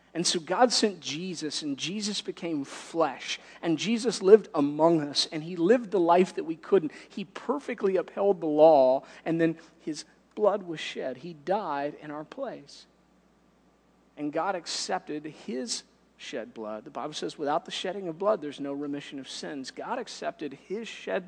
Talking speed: 170 wpm